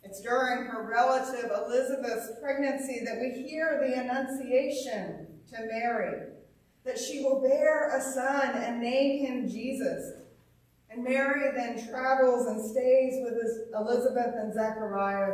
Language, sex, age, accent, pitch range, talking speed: English, female, 40-59, American, 215-265 Hz, 130 wpm